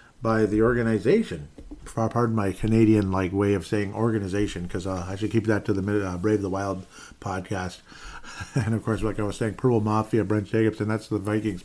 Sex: male